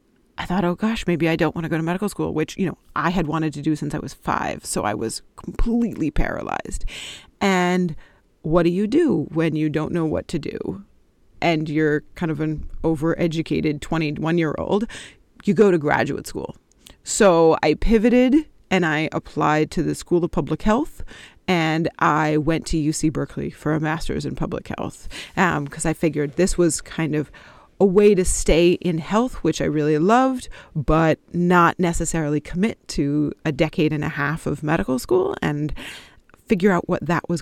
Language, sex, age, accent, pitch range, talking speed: English, female, 30-49, American, 155-190 Hz, 185 wpm